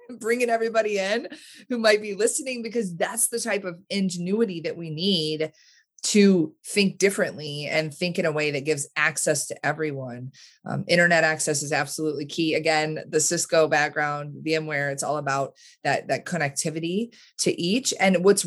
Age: 20-39